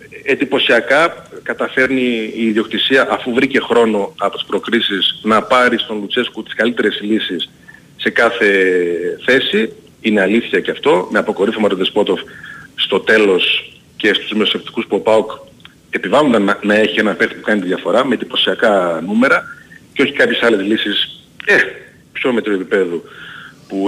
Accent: native